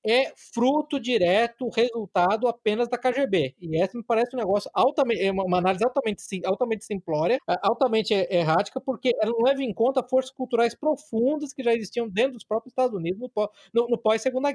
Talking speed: 160 wpm